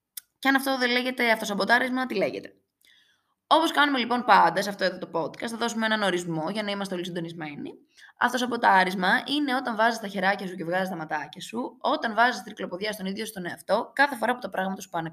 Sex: female